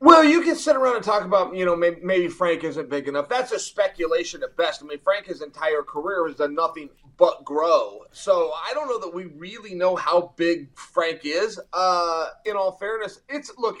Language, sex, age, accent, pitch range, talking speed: English, male, 30-49, American, 160-220 Hz, 215 wpm